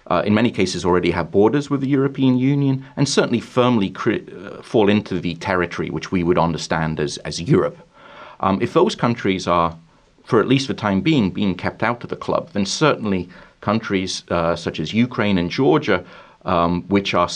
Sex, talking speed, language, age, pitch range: male, 190 wpm, English, 30-49, 85-110 Hz